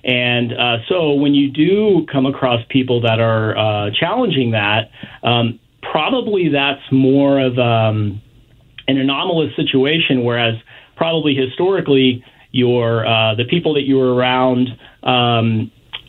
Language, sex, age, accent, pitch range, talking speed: English, male, 40-59, American, 120-140 Hz, 130 wpm